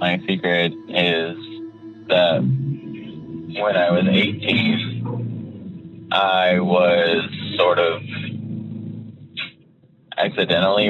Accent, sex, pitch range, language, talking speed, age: American, male, 95-145 Hz, English, 70 wpm, 20-39